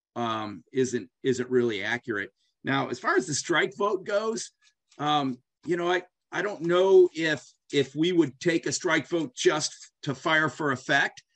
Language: English